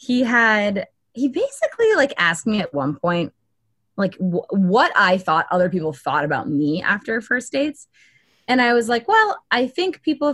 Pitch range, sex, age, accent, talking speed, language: 165-270 Hz, female, 20-39, American, 175 wpm, English